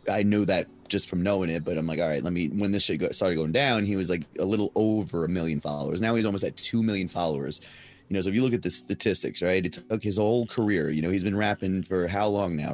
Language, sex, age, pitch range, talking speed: English, male, 30-49, 90-105 Hz, 280 wpm